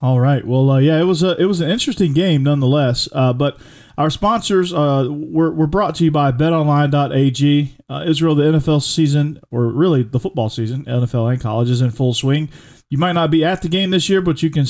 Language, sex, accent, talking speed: English, male, American, 225 wpm